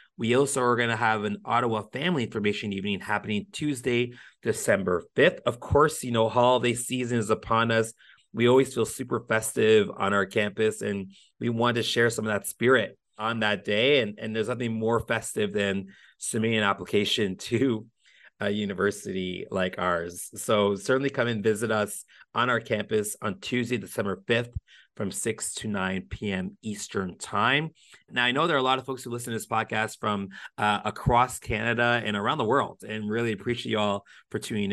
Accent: American